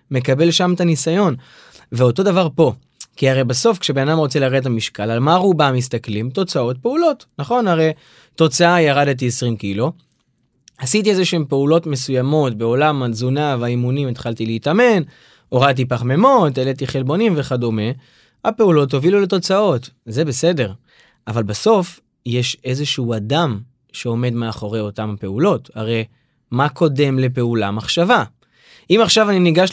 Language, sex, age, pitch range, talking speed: Hebrew, male, 20-39, 125-165 Hz, 135 wpm